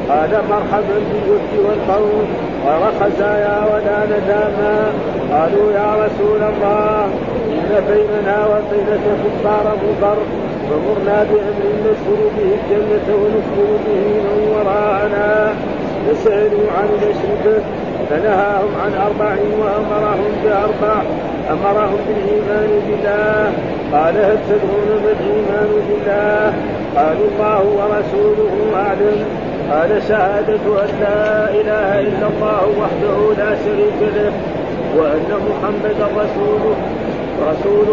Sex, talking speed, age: male, 95 wpm, 50-69